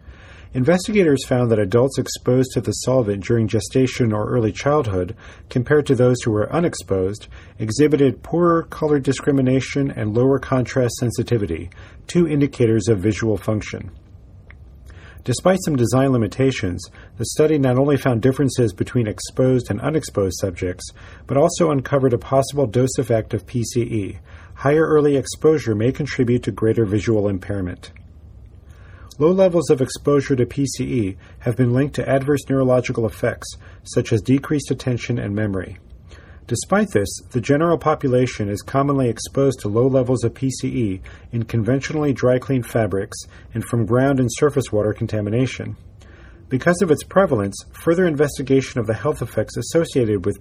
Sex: male